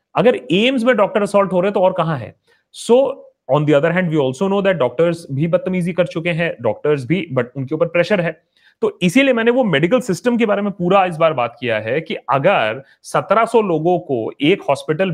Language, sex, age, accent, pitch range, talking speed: Hindi, male, 30-49, native, 150-205 Hz, 220 wpm